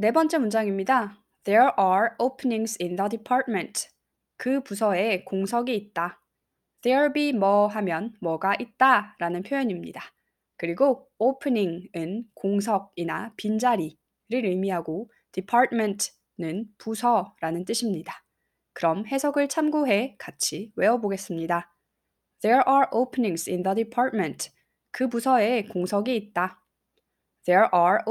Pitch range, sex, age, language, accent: 185-235 Hz, female, 20-39, Korean, native